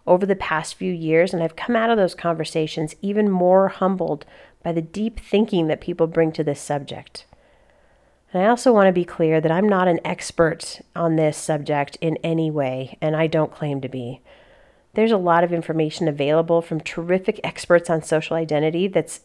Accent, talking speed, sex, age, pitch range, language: American, 195 wpm, female, 40-59, 160-195 Hz, English